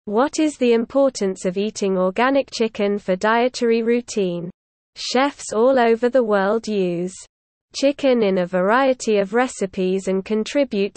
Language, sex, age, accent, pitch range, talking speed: English, female, 20-39, British, 195-250 Hz, 135 wpm